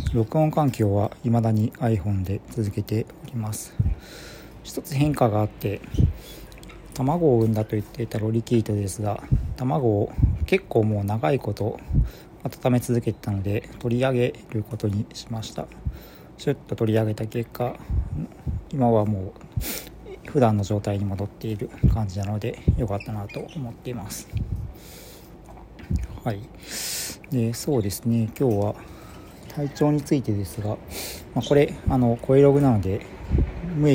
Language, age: Japanese, 40-59